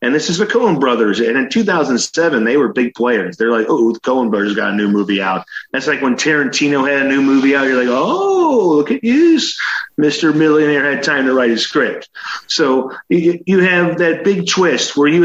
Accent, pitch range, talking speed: American, 130-180 Hz, 220 wpm